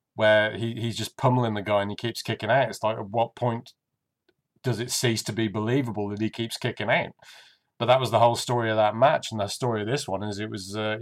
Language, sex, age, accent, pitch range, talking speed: English, male, 30-49, British, 110-135 Hz, 255 wpm